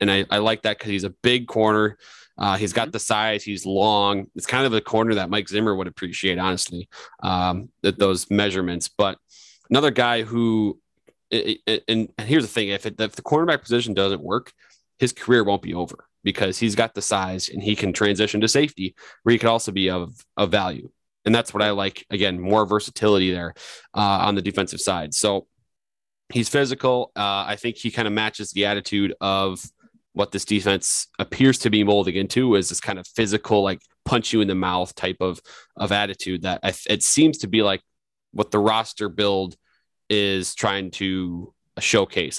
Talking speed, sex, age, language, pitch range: 195 wpm, male, 30-49, English, 95-110 Hz